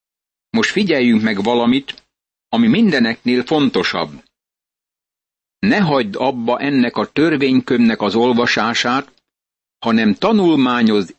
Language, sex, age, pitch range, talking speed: Hungarian, male, 60-79, 115-150 Hz, 90 wpm